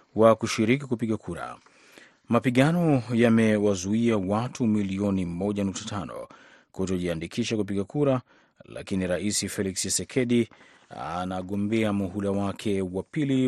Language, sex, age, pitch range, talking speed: Swahili, male, 30-49, 100-115 Hz, 95 wpm